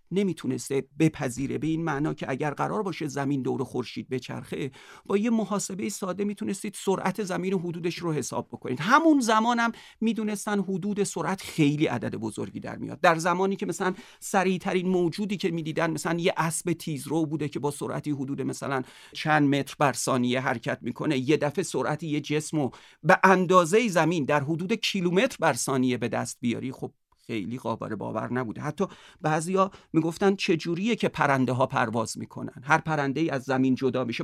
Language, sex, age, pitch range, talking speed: Persian, male, 40-59, 135-190 Hz, 175 wpm